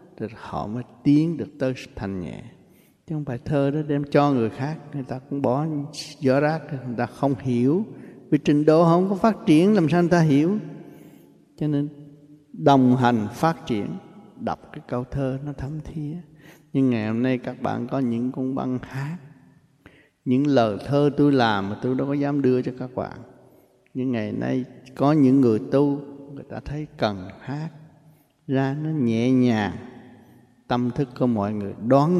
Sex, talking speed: male, 185 wpm